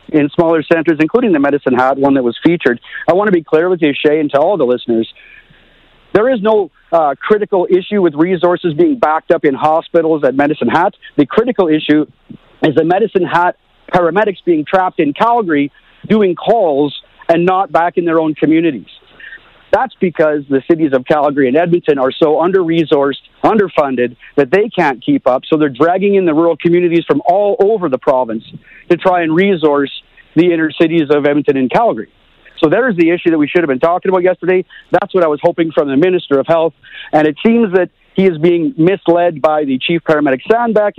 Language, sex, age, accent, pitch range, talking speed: English, male, 50-69, American, 145-185 Hz, 200 wpm